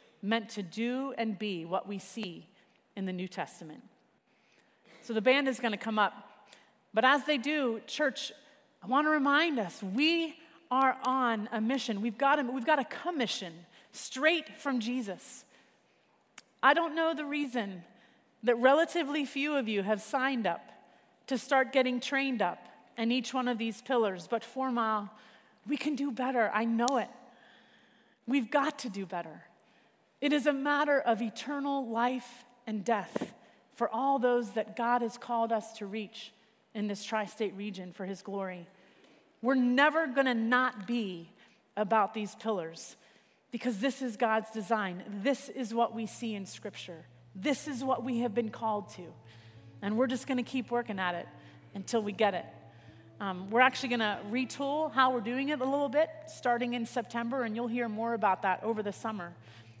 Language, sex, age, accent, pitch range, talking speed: English, female, 30-49, American, 210-265 Hz, 175 wpm